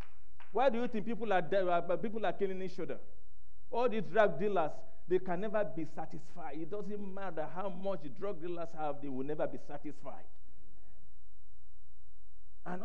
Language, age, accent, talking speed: English, 50-69, Nigerian, 170 wpm